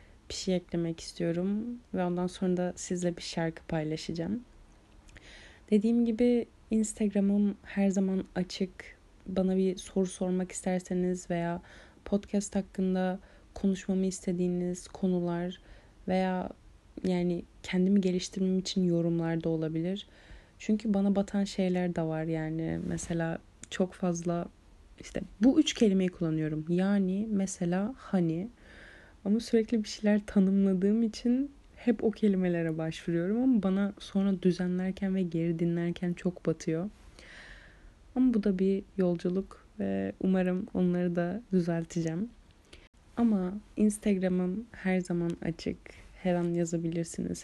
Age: 30-49